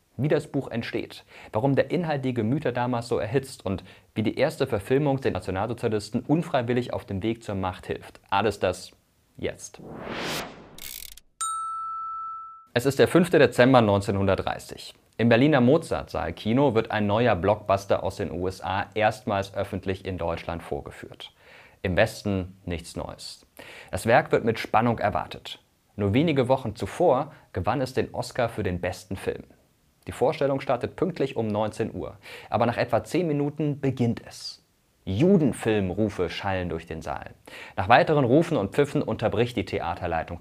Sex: male